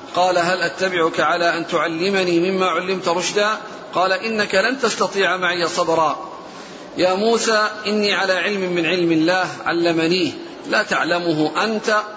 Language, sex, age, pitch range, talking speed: Arabic, male, 40-59, 170-210 Hz, 135 wpm